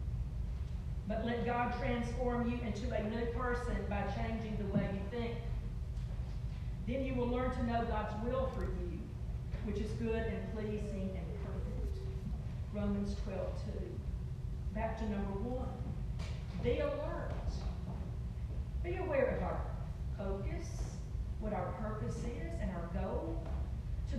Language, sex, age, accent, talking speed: English, female, 40-59, American, 135 wpm